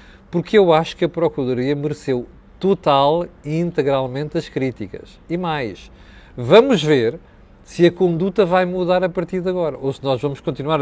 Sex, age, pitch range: male, 40-59, 135-195 Hz